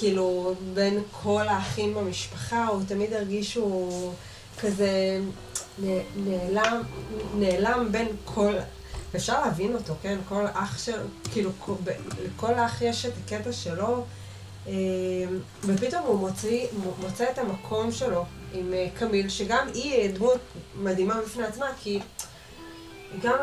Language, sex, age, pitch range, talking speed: Hebrew, female, 20-39, 185-235 Hz, 115 wpm